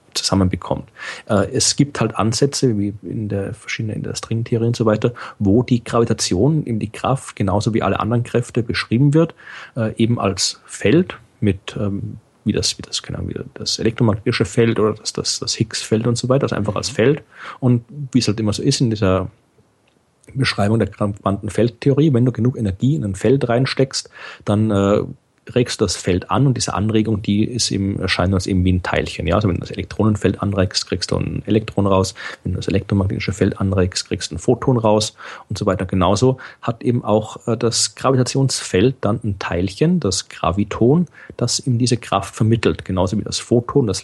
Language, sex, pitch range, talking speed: German, male, 100-125 Hz, 185 wpm